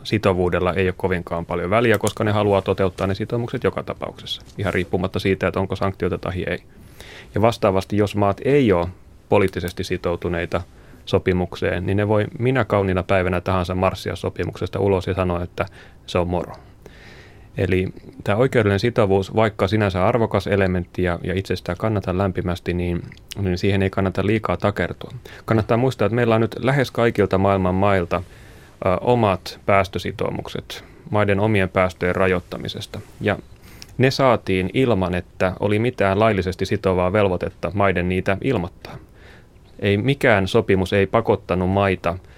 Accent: native